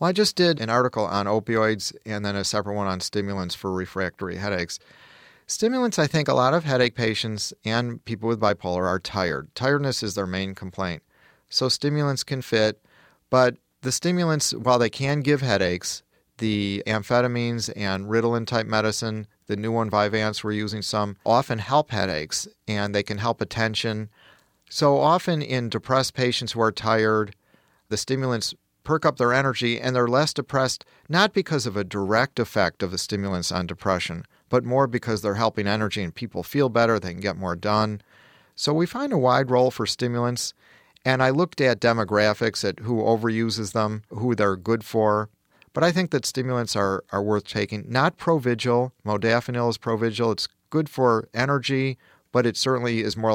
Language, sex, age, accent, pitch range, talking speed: English, male, 40-59, American, 105-125 Hz, 175 wpm